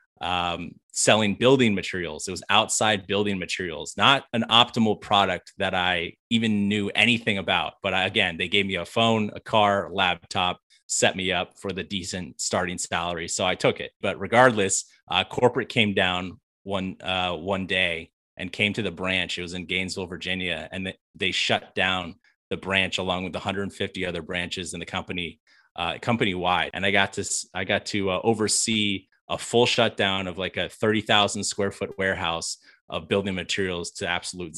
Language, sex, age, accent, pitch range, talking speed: English, male, 30-49, American, 95-105 Hz, 180 wpm